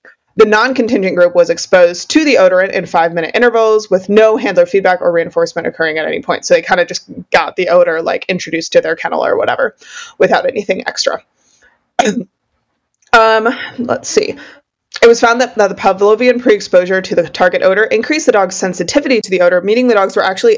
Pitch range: 180-250 Hz